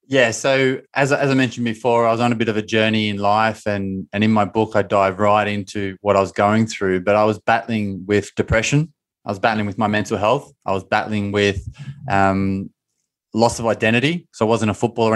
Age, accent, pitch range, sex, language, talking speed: 20-39, Australian, 105-120 Hz, male, English, 225 wpm